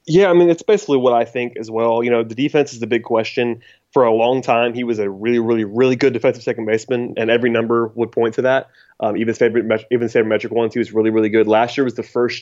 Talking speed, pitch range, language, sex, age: 280 wpm, 115-135 Hz, English, male, 20-39